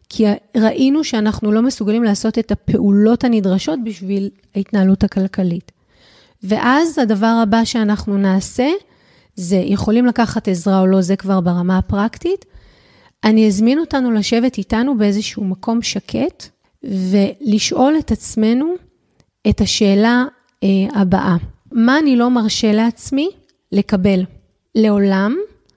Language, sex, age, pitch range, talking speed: Hebrew, female, 30-49, 200-250 Hz, 110 wpm